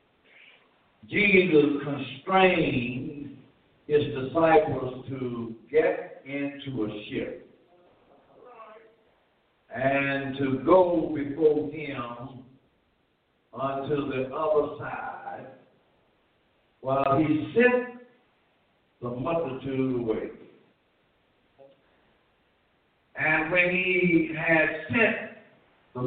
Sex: male